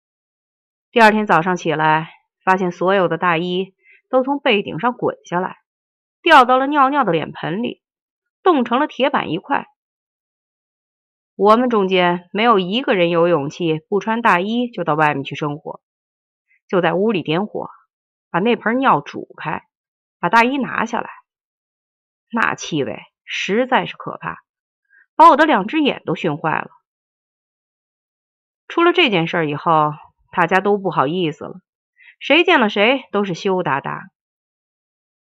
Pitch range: 175-255 Hz